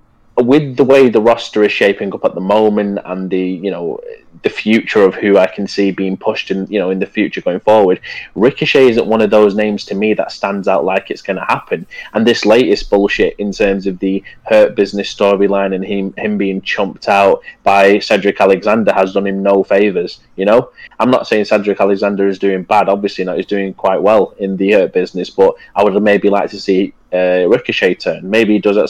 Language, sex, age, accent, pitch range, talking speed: English, male, 20-39, British, 95-110 Hz, 220 wpm